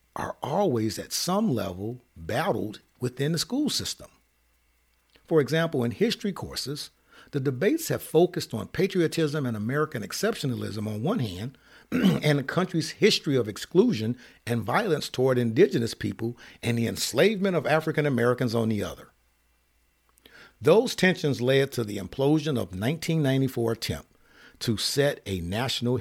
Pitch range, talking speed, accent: 100-150 Hz, 140 wpm, American